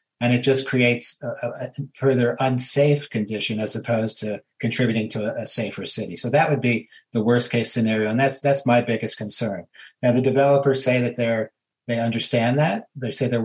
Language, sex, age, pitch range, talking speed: English, male, 40-59, 110-130 Hz, 195 wpm